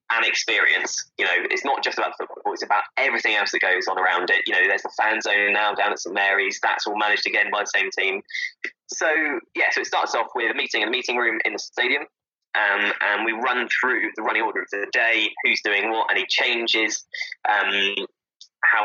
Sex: male